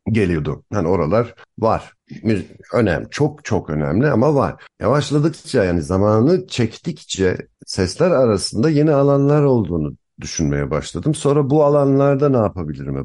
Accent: native